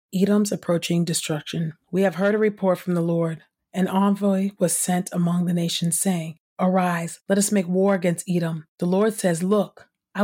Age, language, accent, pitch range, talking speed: 30-49, English, American, 170-195 Hz, 180 wpm